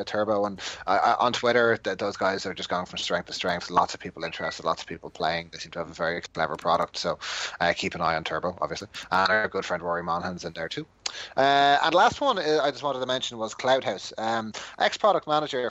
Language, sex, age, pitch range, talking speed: English, male, 30-49, 105-145 Hz, 235 wpm